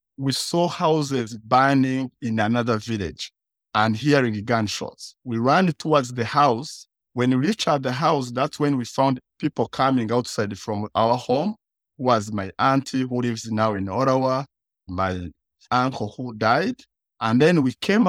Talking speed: 155 wpm